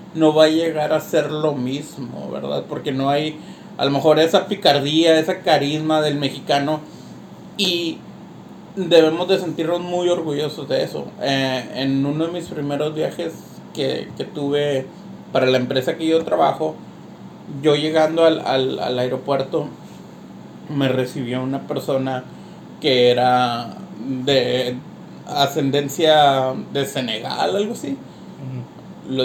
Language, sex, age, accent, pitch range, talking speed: Spanish, male, 30-49, Mexican, 140-180 Hz, 130 wpm